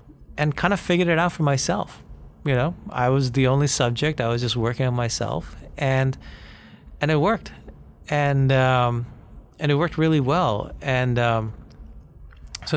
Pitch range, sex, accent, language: 115-135 Hz, male, American, English